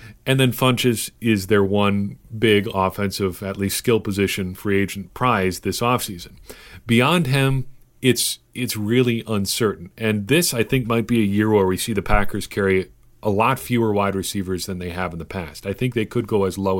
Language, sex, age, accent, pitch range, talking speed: English, male, 40-59, American, 95-115 Hz, 195 wpm